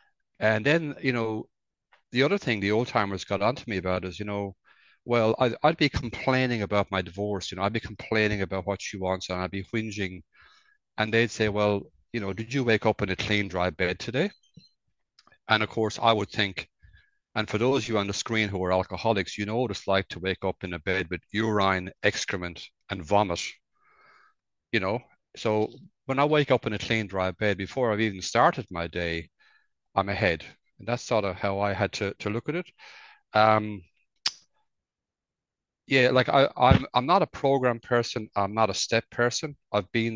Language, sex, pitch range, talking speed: English, male, 100-120 Hz, 205 wpm